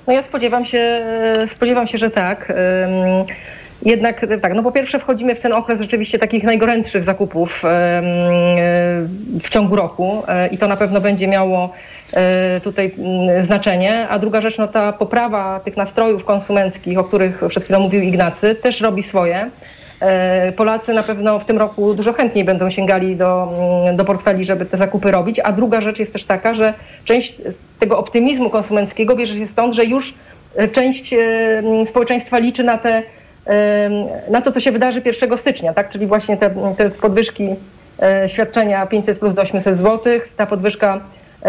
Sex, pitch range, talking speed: female, 195-225 Hz, 155 wpm